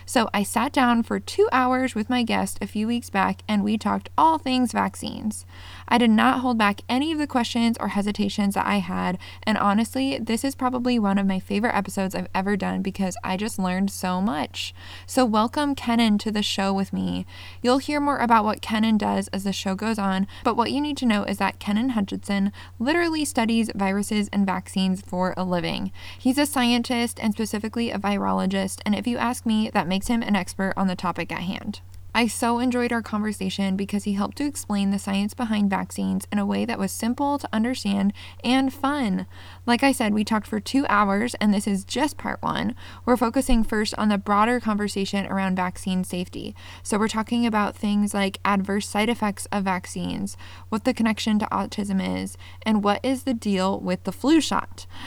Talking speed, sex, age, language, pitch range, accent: 205 wpm, female, 20-39, English, 190-235 Hz, American